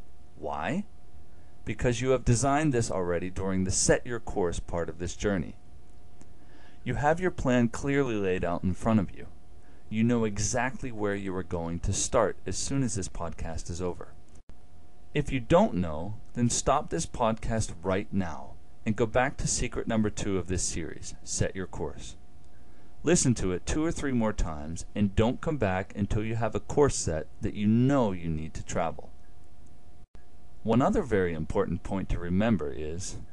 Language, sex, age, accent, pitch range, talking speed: English, male, 40-59, American, 85-115 Hz, 180 wpm